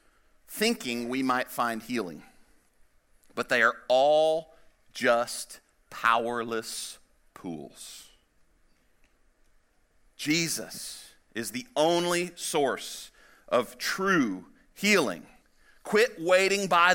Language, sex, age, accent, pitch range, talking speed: English, male, 40-59, American, 130-185 Hz, 80 wpm